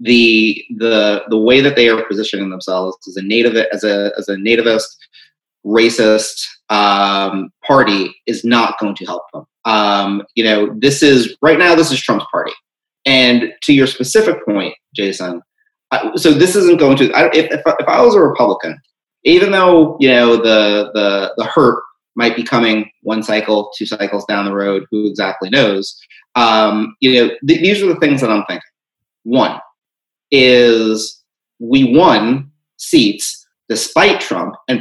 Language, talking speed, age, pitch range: English, 170 wpm, 30-49, 105-130 Hz